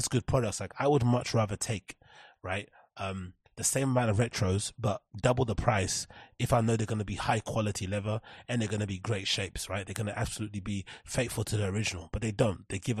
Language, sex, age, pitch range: English, male, 20-39, 100-120 Hz